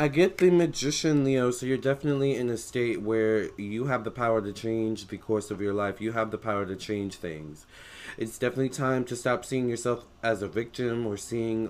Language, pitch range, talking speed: English, 100-125 Hz, 215 wpm